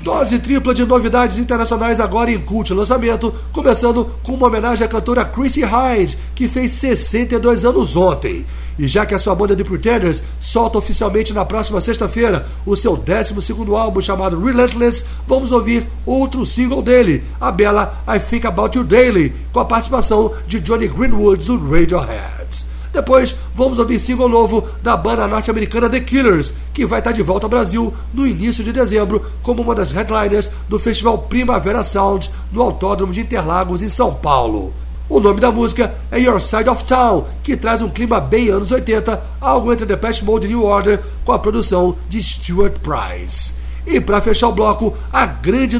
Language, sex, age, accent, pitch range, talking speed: English, male, 60-79, Brazilian, 195-240 Hz, 175 wpm